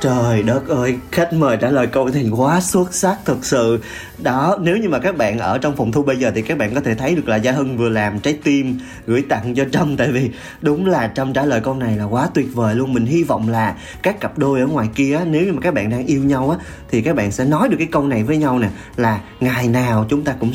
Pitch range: 115-150 Hz